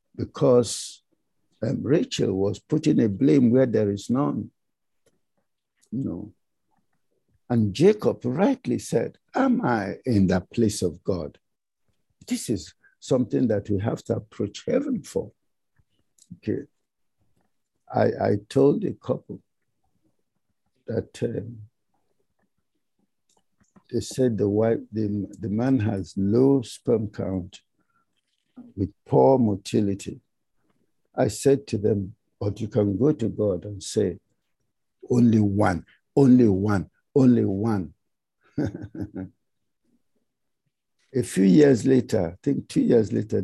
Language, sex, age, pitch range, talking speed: English, male, 60-79, 100-130 Hz, 115 wpm